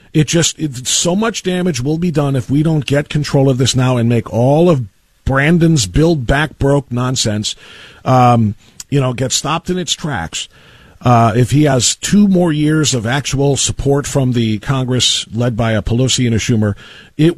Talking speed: 190 wpm